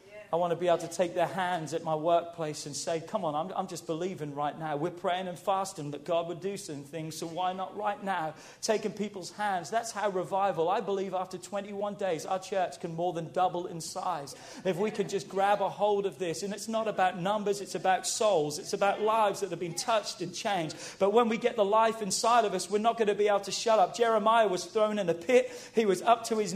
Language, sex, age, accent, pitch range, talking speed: English, male, 40-59, British, 180-250 Hz, 250 wpm